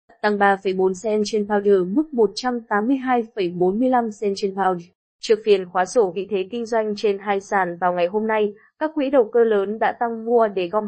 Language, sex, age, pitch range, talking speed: Vietnamese, female, 20-39, 195-235 Hz, 195 wpm